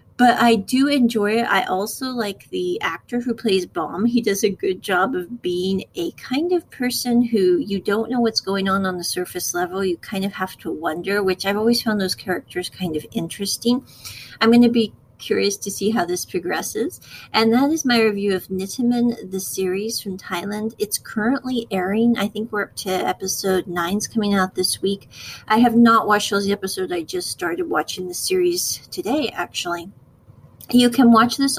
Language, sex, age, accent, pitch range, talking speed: English, female, 40-59, American, 190-240 Hz, 195 wpm